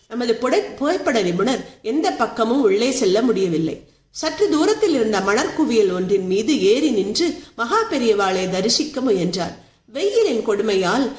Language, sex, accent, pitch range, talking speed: Tamil, female, native, 205-340 Hz, 125 wpm